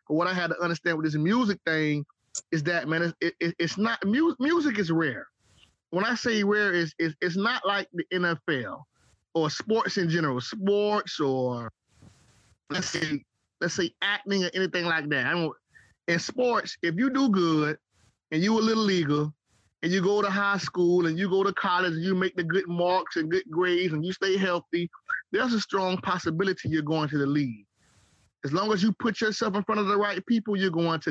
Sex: male